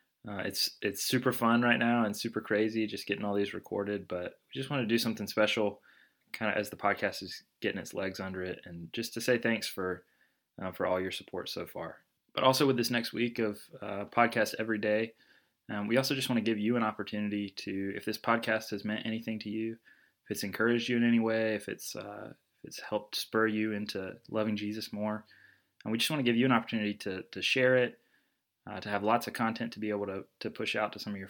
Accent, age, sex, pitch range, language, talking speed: American, 20-39, male, 100-120 Hz, English, 240 wpm